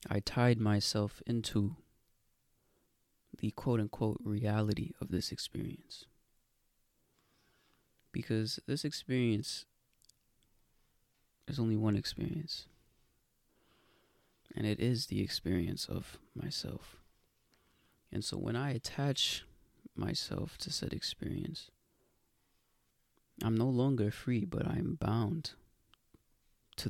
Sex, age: male, 20-39